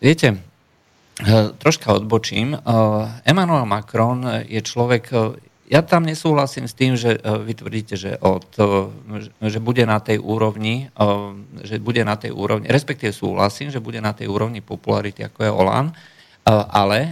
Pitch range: 100-120 Hz